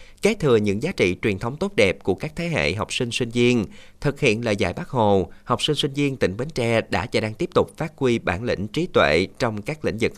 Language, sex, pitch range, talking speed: Vietnamese, male, 105-135 Hz, 265 wpm